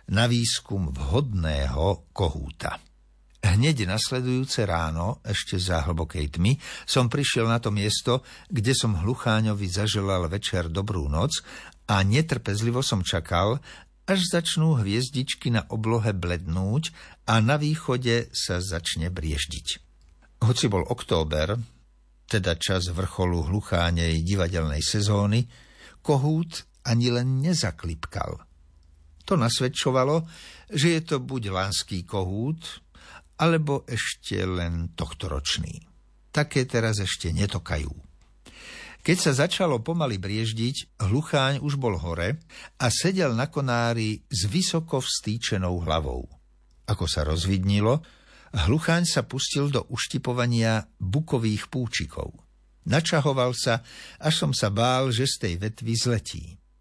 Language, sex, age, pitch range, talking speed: Slovak, male, 60-79, 90-130 Hz, 110 wpm